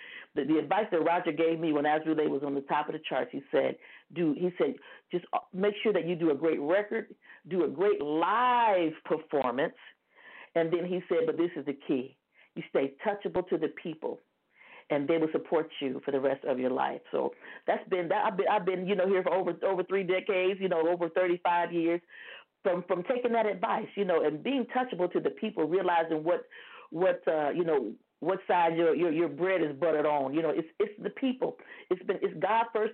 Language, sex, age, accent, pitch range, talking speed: English, female, 50-69, American, 165-225 Hz, 220 wpm